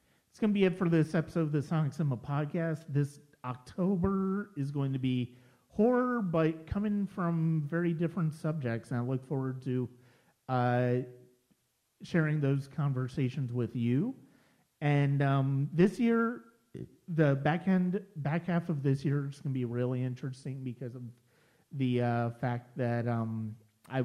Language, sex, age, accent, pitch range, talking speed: English, male, 40-59, American, 120-155 Hz, 155 wpm